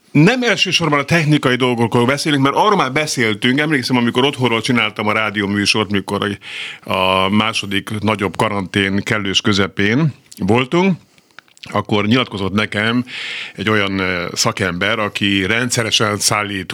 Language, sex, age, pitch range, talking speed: Hungarian, male, 50-69, 100-125 Hz, 120 wpm